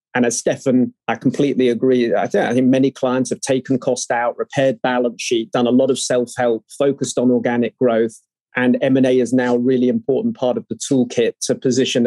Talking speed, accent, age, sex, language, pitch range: 205 wpm, British, 30-49, male, English, 125-140 Hz